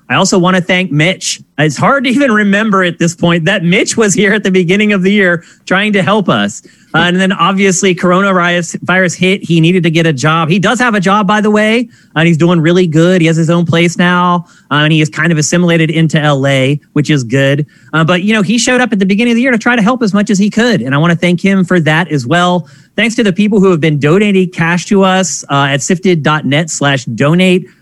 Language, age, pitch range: English, 30-49, 155-200 Hz